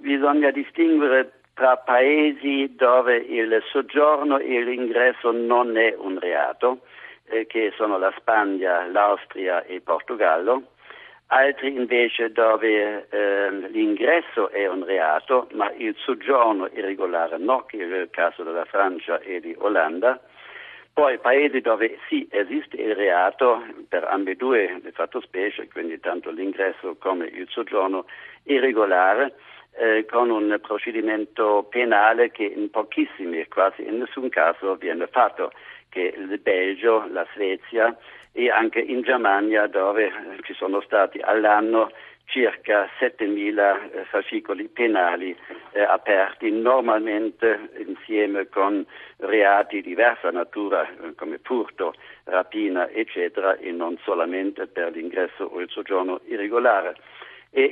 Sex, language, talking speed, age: male, Italian, 120 wpm, 60-79